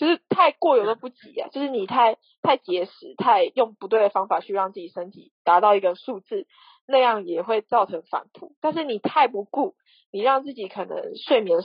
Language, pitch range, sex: Chinese, 200-340 Hz, female